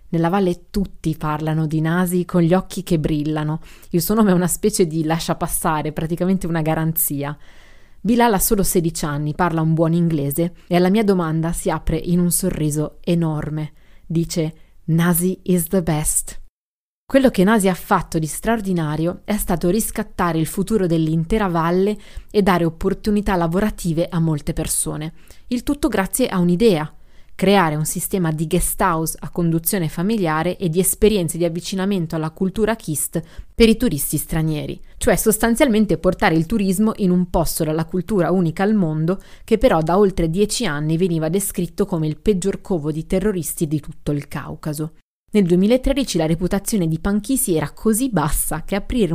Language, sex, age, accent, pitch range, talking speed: Italian, female, 20-39, native, 160-200 Hz, 165 wpm